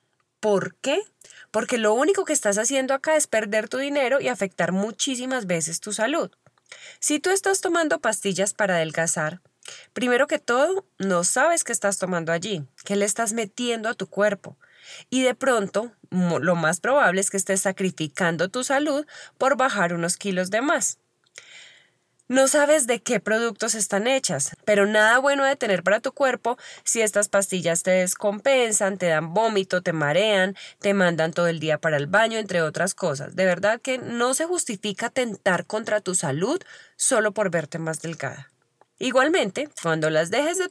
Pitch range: 185-255 Hz